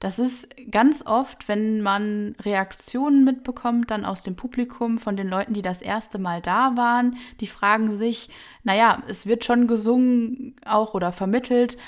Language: German